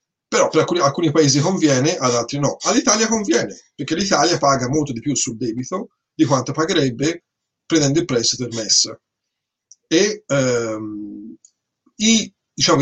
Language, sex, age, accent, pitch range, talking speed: Italian, male, 40-59, native, 125-160 Hz, 145 wpm